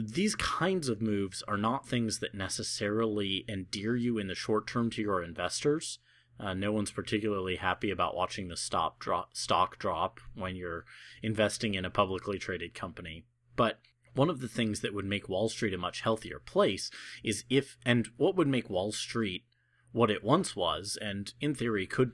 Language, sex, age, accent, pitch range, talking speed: English, male, 30-49, American, 95-120 Hz, 180 wpm